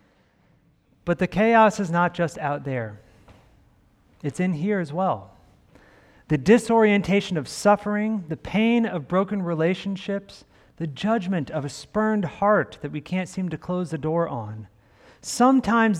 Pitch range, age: 140-205 Hz, 40-59